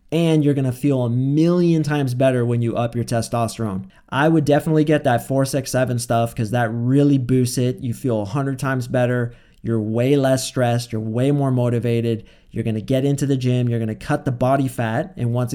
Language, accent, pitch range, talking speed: English, American, 120-140 Hz, 220 wpm